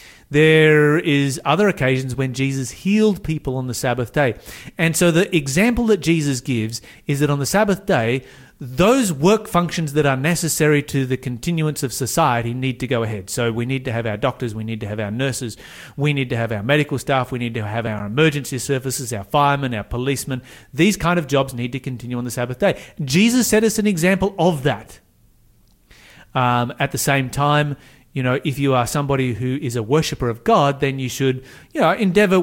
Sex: male